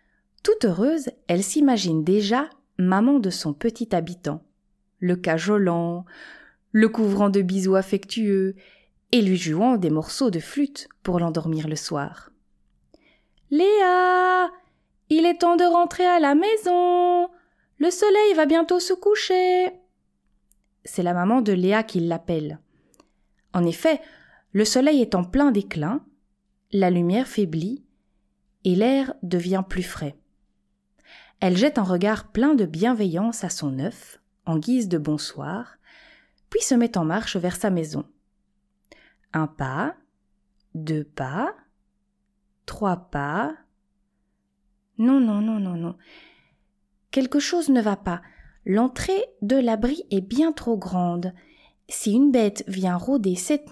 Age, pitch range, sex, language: 20-39, 180-275 Hz, female, French